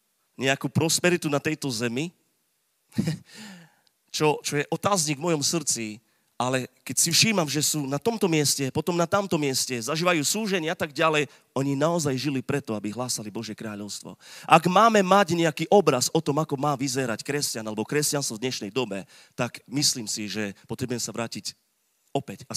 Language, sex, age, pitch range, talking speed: Slovak, male, 30-49, 125-170 Hz, 165 wpm